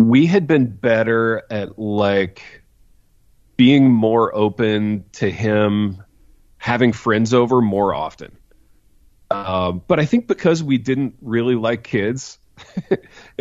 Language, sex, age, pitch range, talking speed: English, male, 30-49, 100-130 Hz, 115 wpm